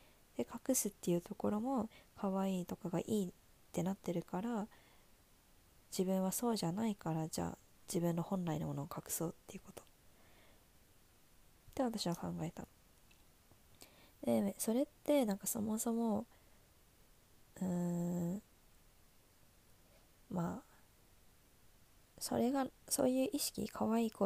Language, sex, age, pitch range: Japanese, female, 20-39, 165-225 Hz